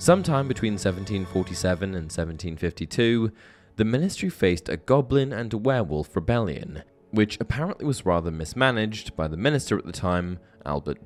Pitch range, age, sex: 90-125 Hz, 20-39, male